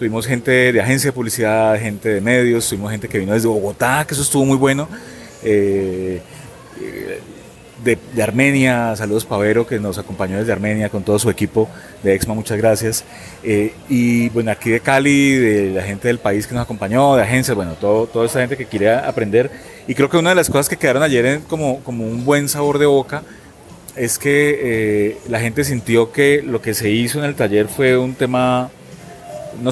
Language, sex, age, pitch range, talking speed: Spanish, male, 30-49, 110-135 Hz, 200 wpm